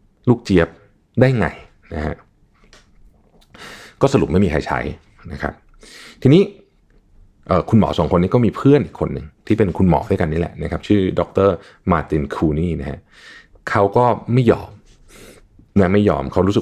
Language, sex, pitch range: Thai, male, 80-110 Hz